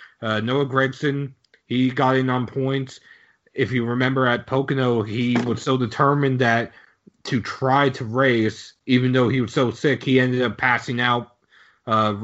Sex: male